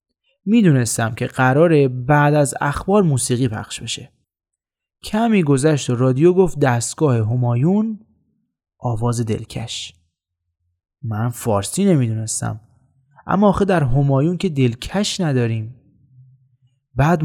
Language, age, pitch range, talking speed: Persian, 20-39, 115-165 Hz, 95 wpm